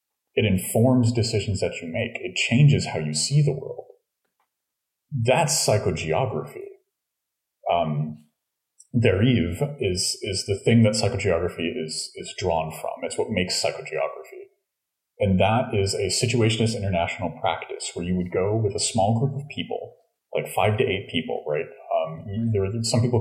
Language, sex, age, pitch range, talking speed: English, male, 30-49, 90-125 Hz, 150 wpm